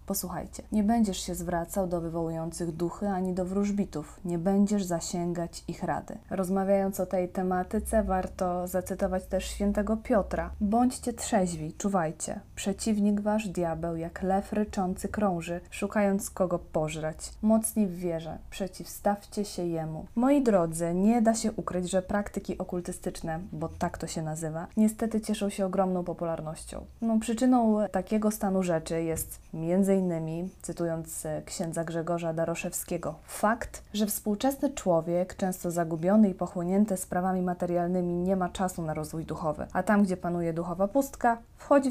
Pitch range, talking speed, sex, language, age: 170-210 Hz, 140 wpm, female, Polish, 20-39